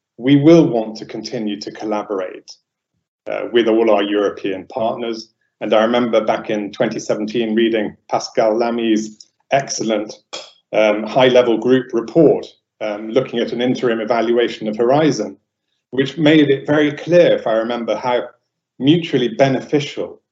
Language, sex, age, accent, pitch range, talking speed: English, male, 30-49, British, 110-135 Hz, 135 wpm